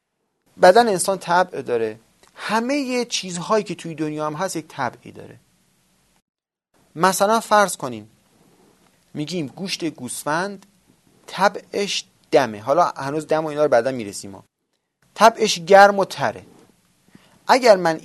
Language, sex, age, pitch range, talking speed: Persian, male, 30-49, 125-185 Hz, 120 wpm